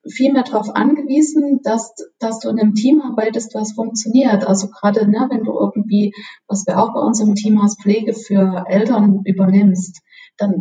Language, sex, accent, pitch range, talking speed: German, female, German, 200-240 Hz, 180 wpm